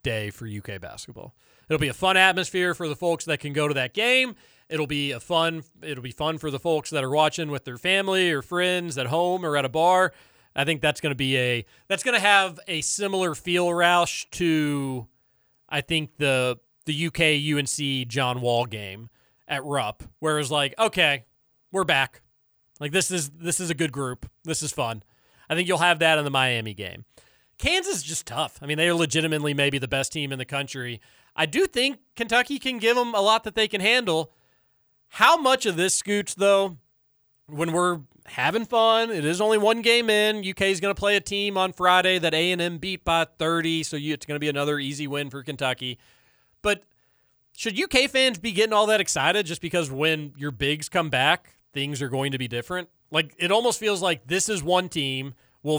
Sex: male